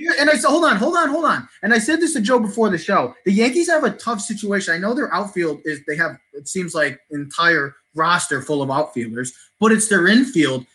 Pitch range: 150-215 Hz